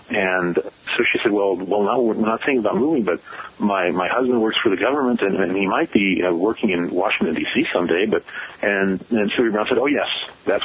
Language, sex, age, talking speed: English, male, 40-59, 230 wpm